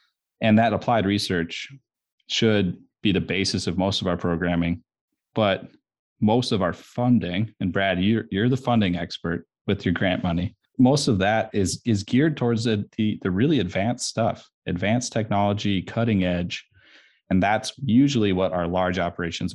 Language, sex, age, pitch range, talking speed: English, male, 30-49, 90-110 Hz, 160 wpm